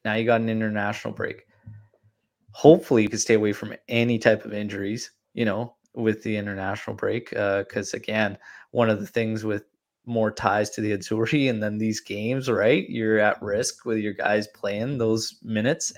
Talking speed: 185 wpm